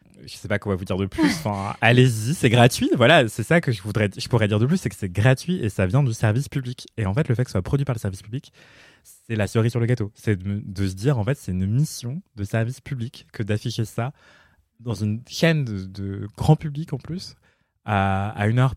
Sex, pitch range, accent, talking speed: male, 100-130 Hz, French, 260 wpm